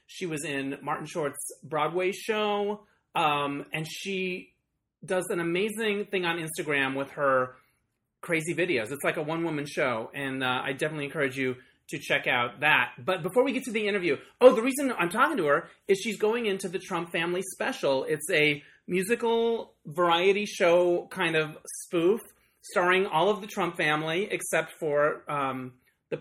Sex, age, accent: male, 30-49, American